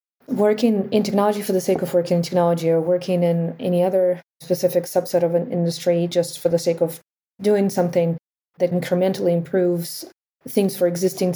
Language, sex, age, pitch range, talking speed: English, female, 20-39, 175-225 Hz, 175 wpm